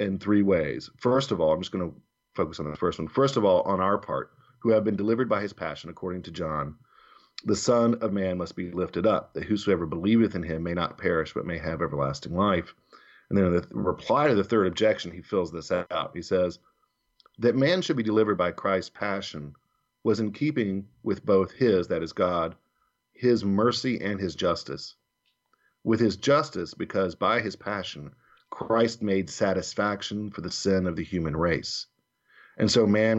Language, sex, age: English, male, 40-59